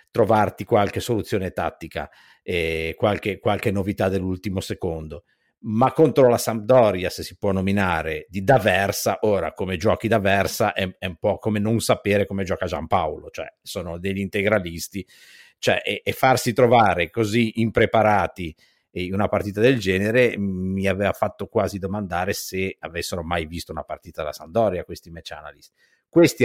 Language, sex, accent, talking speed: Italian, male, native, 150 wpm